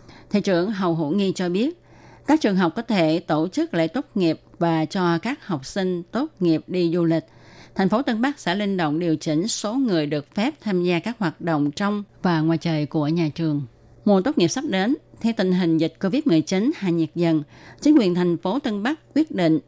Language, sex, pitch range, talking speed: Vietnamese, female, 155-195 Hz, 225 wpm